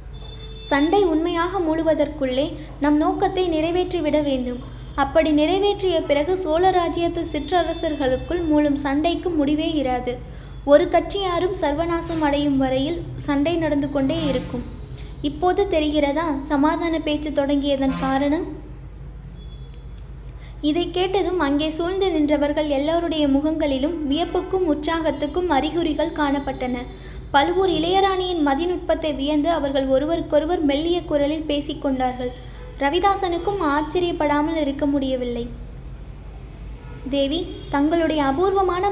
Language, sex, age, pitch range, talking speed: Tamil, female, 20-39, 285-345 Hz, 90 wpm